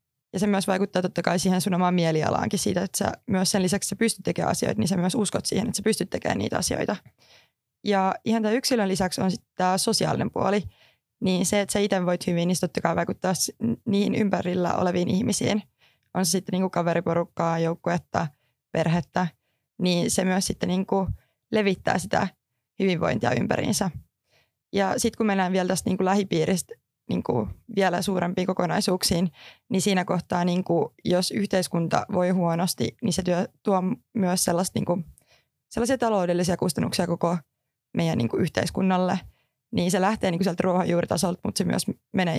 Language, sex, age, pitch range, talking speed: Finnish, female, 20-39, 175-200 Hz, 155 wpm